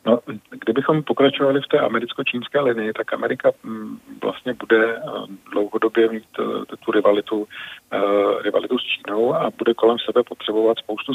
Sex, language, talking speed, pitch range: male, Czech, 130 wpm, 105-115 Hz